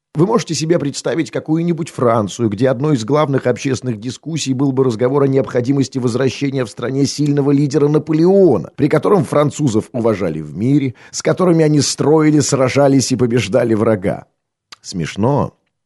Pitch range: 110-145 Hz